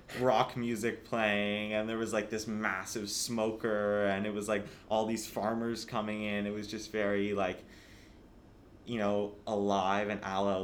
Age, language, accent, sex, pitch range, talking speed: 20-39, English, American, male, 90-105 Hz, 165 wpm